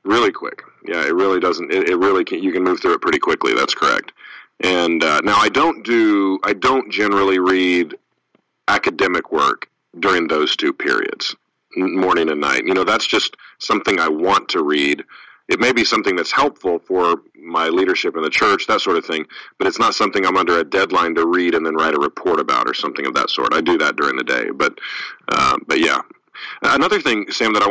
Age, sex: 40-59, male